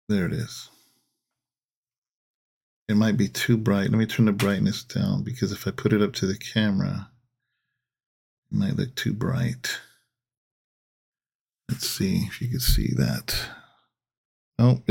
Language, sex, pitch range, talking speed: English, male, 110-125 Hz, 145 wpm